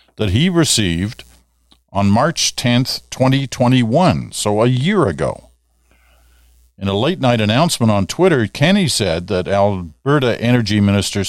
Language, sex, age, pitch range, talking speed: English, male, 50-69, 80-125 Hz, 130 wpm